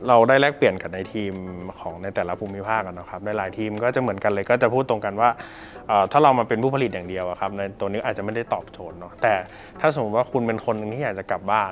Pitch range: 100-120 Hz